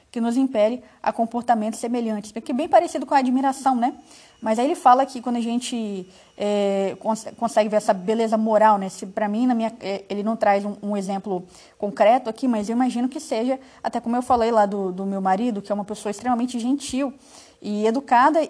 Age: 20-39